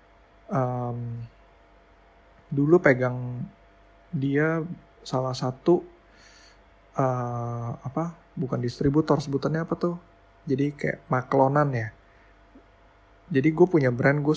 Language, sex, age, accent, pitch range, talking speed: Indonesian, male, 20-39, native, 110-145 Hz, 90 wpm